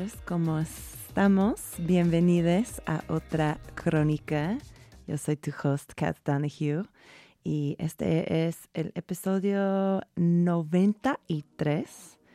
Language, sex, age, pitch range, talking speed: Spanish, female, 20-39, 150-190 Hz, 85 wpm